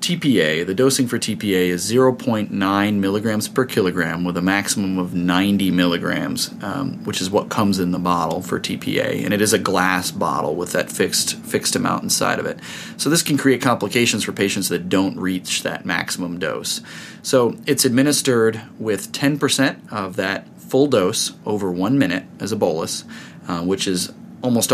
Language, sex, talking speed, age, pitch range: English, male, 175 wpm, 30-49, 90-120 Hz